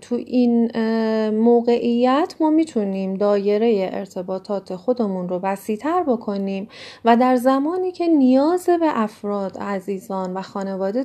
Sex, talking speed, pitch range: female, 115 wpm, 185-240 Hz